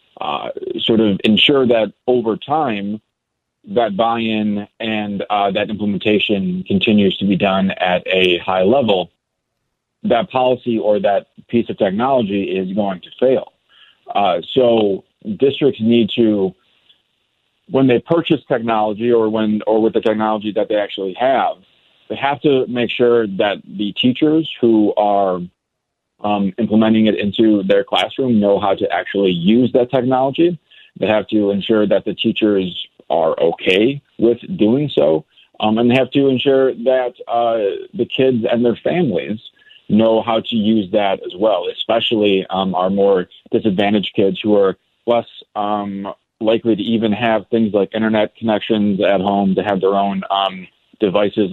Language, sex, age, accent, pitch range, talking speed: English, male, 40-59, American, 100-120 Hz, 155 wpm